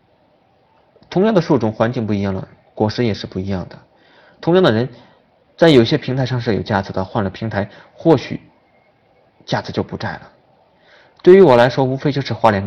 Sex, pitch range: male, 100-130 Hz